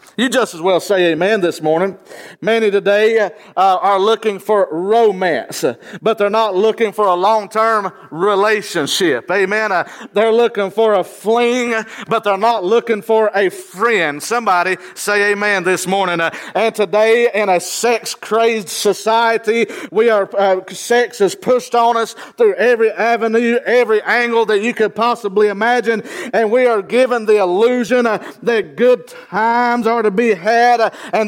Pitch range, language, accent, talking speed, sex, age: 210-240 Hz, English, American, 160 wpm, male, 50-69